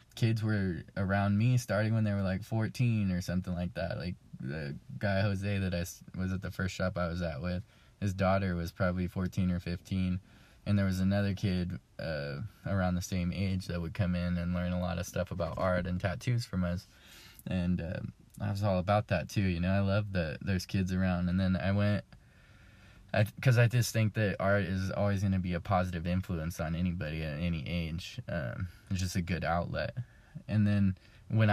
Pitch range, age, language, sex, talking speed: 90-100 Hz, 20-39, English, male, 210 wpm